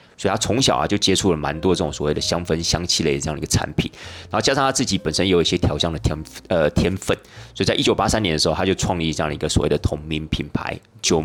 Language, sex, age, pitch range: Chinese, male, 30-49, 80-105 Hz